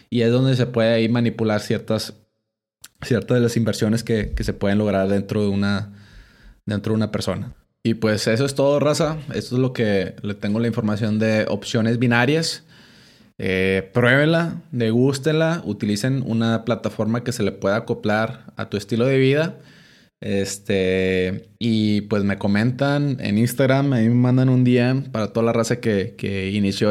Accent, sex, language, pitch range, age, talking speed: Mexican, male, Spanish, 105-125 Hz, 20-39, 170 wpm